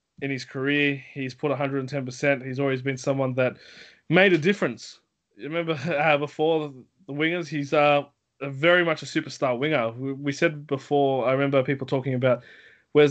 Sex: male